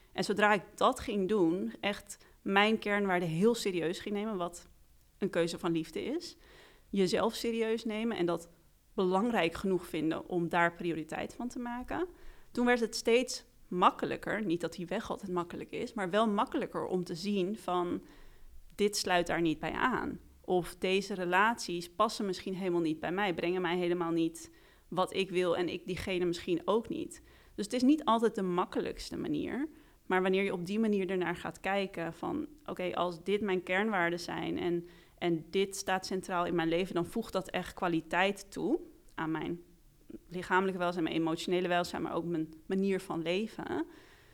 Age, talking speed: 30-49, 175 wpm